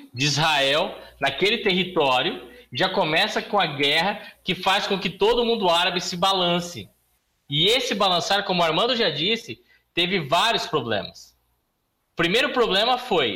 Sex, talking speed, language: male, 140 wpm, Portuguese